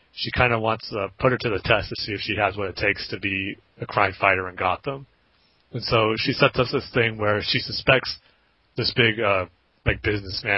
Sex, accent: male, American